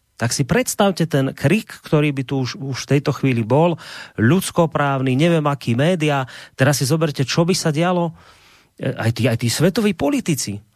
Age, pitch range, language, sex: 30-49, 130-170 Hz, Slovak, male